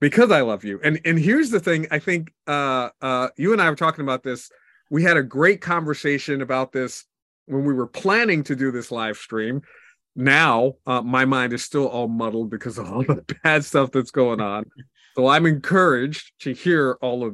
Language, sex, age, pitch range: English, male, 40-59, 120-150 Hz